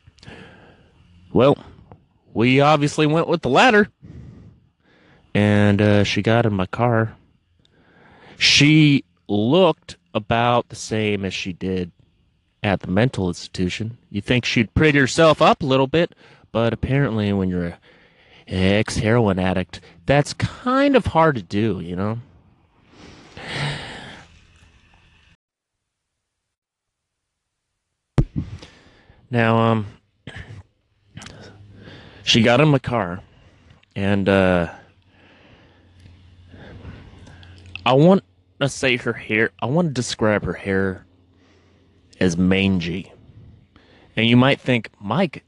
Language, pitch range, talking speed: English, 90-125 Hz, 105 wpm